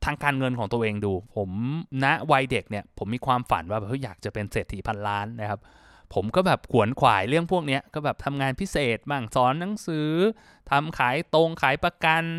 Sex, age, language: male, 20-39, Thai